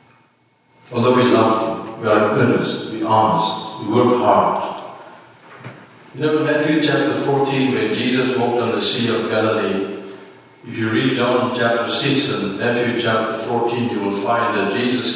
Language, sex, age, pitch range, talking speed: English, male, 60-79, 110-135 Hz, 160 wpm